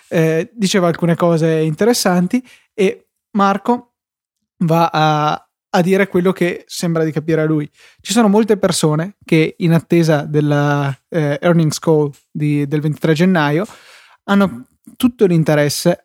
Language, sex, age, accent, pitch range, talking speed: Italian, male, 20-39, native, 150-175 Hz, 135 wpm